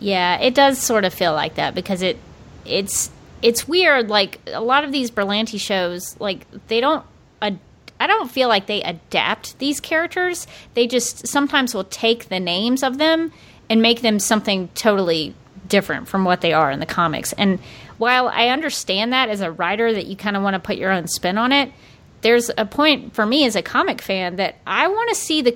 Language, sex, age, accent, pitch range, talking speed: English, female, 30-49, American, 190-235 Hz, 205 wpm